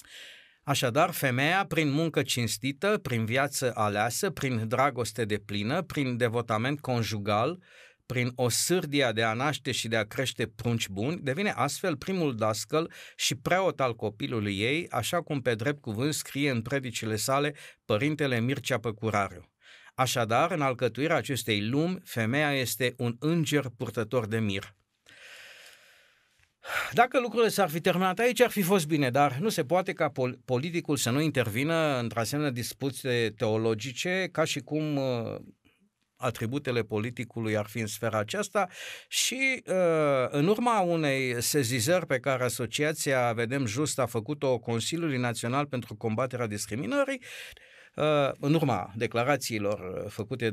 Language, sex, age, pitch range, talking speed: Romanian, male, 50-69, 115-160 Hz, 140 wpm